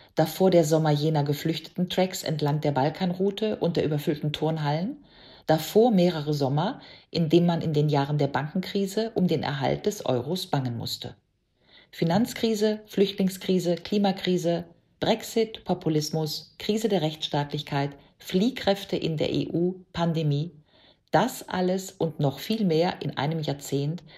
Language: German